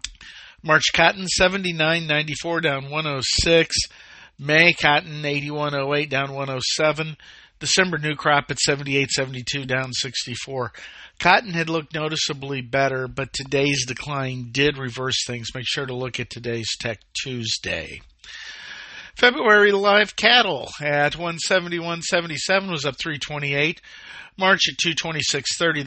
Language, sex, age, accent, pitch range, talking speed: English, male, 50-69, American, 130-155 Hz, 110 wpm